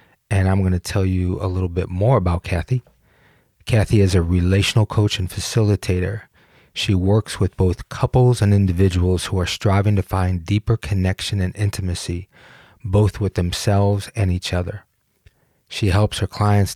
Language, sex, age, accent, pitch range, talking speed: English, male, 30-49, American, 90-105 Hz, 160 wpm